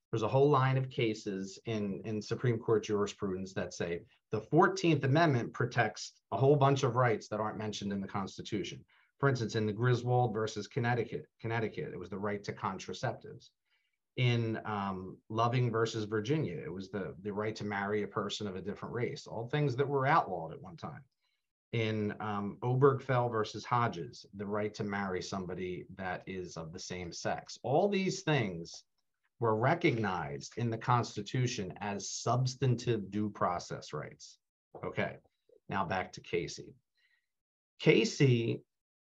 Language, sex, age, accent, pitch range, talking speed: English, male, 40-59, American, 105-130 Hz, 160 wpm